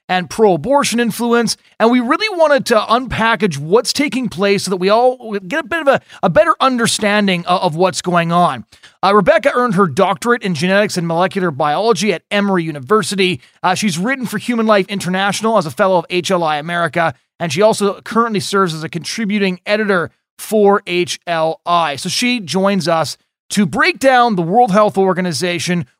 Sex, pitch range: male, 160-205 Hz